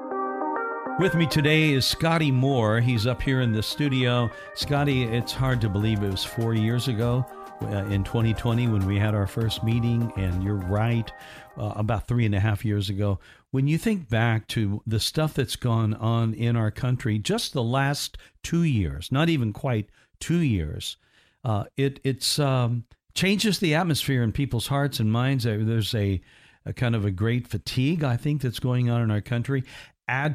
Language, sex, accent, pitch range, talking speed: English, male, American, 110-135 Hz, 185 wpm